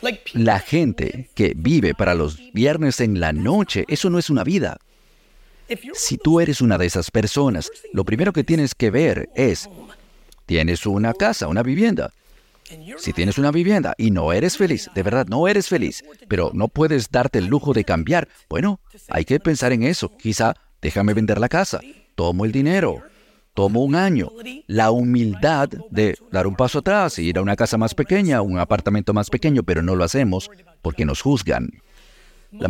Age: 50-69